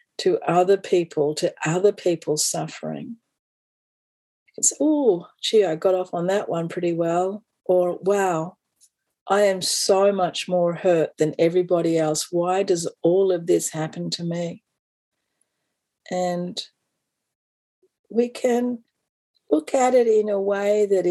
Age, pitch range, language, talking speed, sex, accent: 50-69, 175-215 Hz, English, 135 wpm, female, Australian